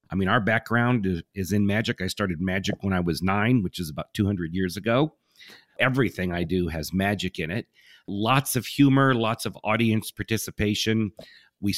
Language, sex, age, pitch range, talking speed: English, male, 50-69, 95-120 Hz, 180 wpm